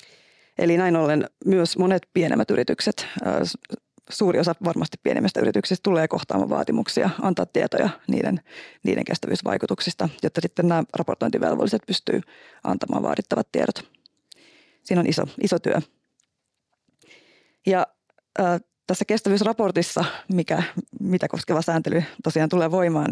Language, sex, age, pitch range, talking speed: Finnish, female, 30-49, 165-190 Hz, 110 wpm